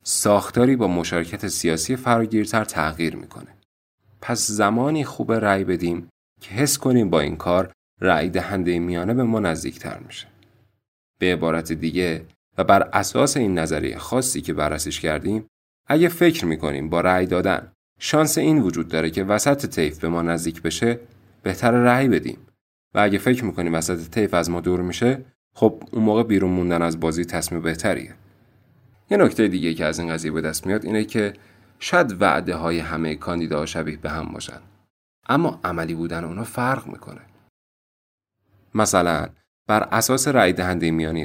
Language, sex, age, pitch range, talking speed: Persian, male, 30-49, 85-110 Hz, 155 wpm